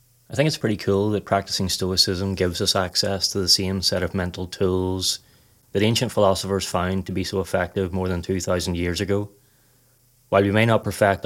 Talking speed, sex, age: 190 wpm, male, 30-49